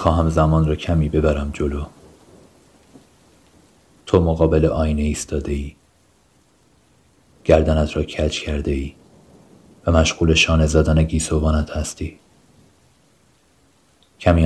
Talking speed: 85 wpm